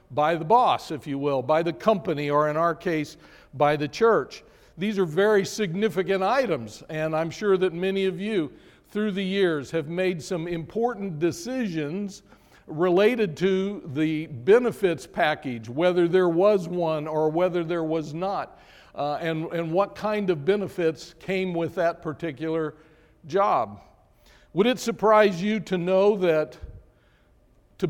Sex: male